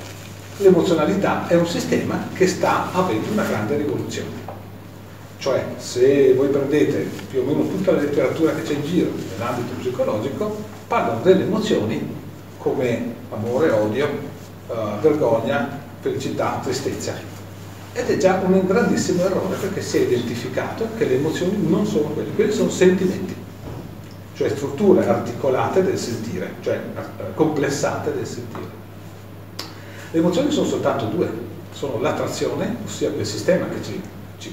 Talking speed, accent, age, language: 135 wpm, native, 40-59, Italian